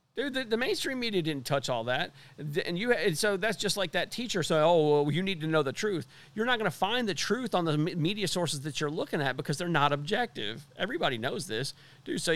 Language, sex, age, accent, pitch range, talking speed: English, male, 40-59, American, 130-160 Hz, 250 wpm